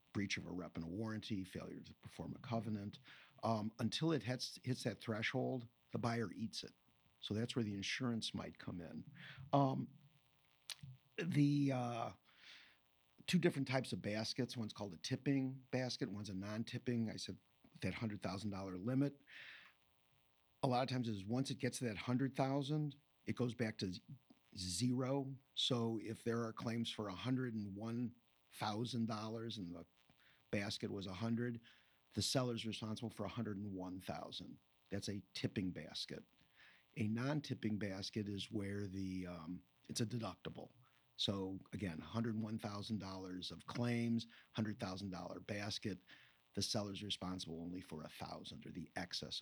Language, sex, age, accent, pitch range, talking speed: English, male, 50-69, American, 95-125 Hz, 140 wpm